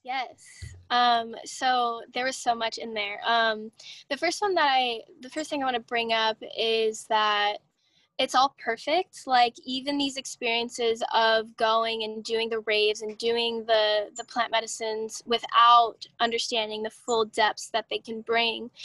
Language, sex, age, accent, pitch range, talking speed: English, female, 10-29, American, 225-260 Hz, 170 wpm